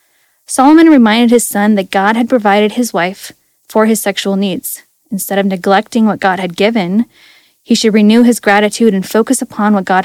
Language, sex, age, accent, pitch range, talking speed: English, female, 10-29, American, 205-250 Hz, 185 wpm